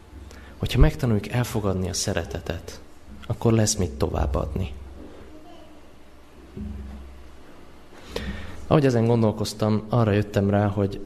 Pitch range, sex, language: 75-110 Hz, male, Hungarian